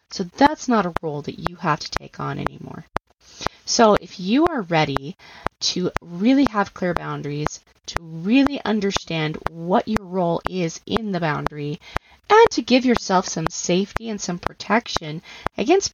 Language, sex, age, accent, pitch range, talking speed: English, female, 20-39, American, 165-225 Hz, 160 wpm